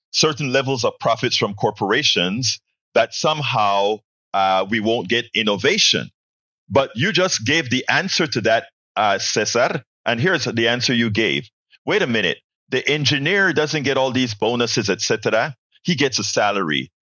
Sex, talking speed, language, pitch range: male, 155 wpm, English, 115-165 Hz